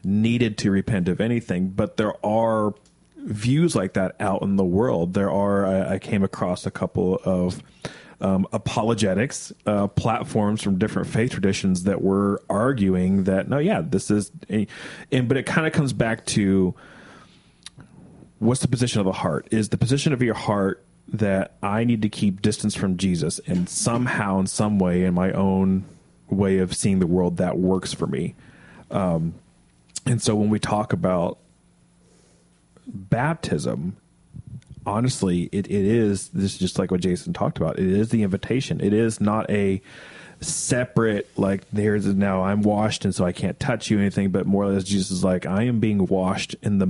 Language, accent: English, American